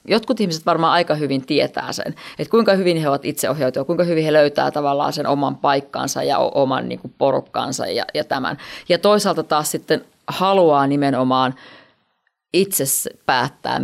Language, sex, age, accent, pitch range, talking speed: Finnish, female, 30-49, native, 145-185 Hz, 160 wpm